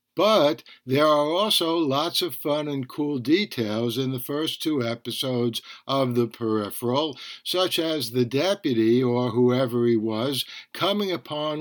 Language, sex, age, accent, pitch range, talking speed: English, male, 60-79, American, 125-160 Hz, 145 wpm